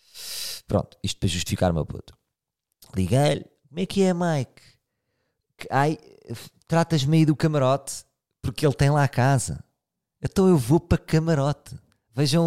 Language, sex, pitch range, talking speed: Portuguese, male, 105-150 Hz, 140 wpm